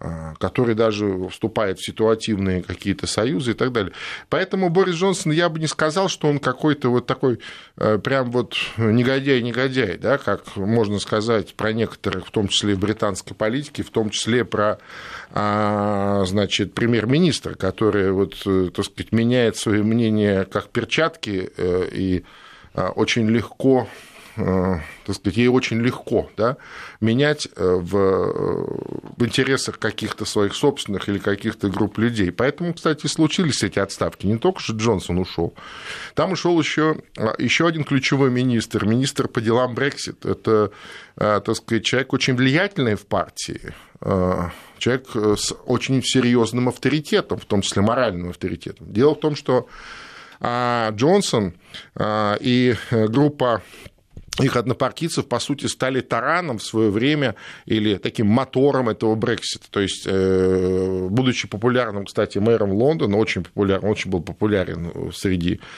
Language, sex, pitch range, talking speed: Russian, male, 100-130 Hz, 130 wpm